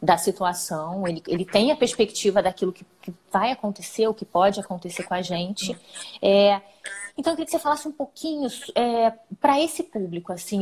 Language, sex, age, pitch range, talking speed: Portuguese, female, 20-39, 205-280 Hz, 185 wpm